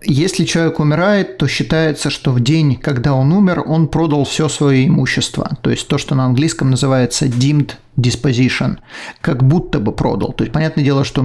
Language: Russian